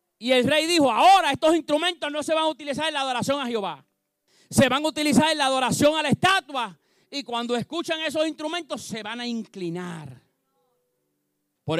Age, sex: 40-59, male